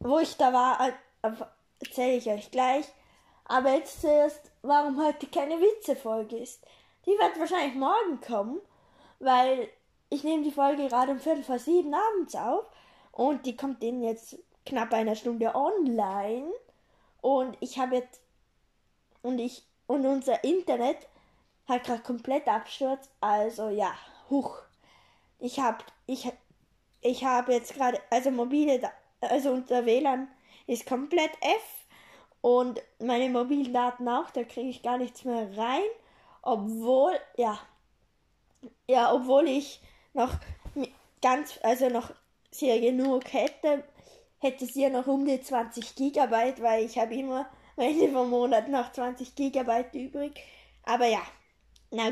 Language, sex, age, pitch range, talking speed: German, female, 10-29, 240-280 Hz, 135 wpm